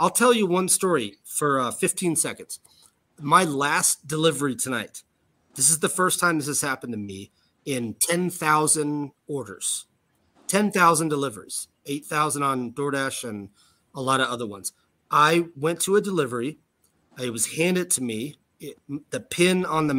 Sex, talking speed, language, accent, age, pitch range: male, 155 wpm, English, American, 30-49, 120-165 Hz